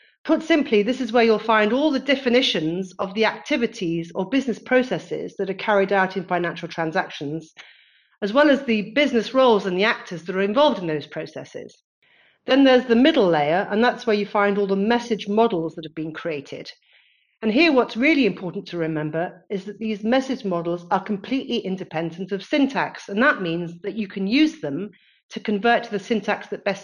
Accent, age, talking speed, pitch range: British, 40-59, 195 wpm, 175-235 Hz